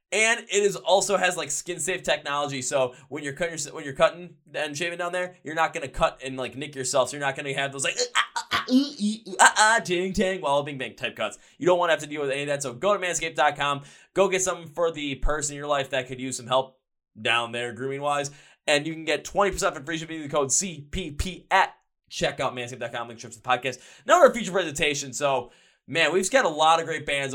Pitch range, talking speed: 135-165 Hz, 240 wpm